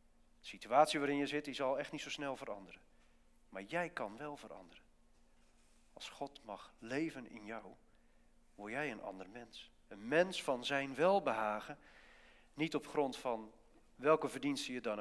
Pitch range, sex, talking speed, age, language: 90-135 Hz, male, 165 wpm, 40-59, English